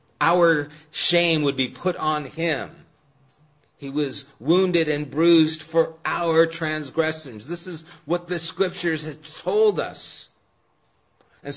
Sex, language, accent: male, English, American